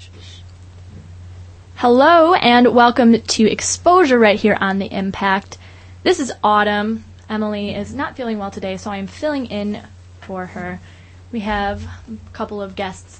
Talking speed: 145 wpm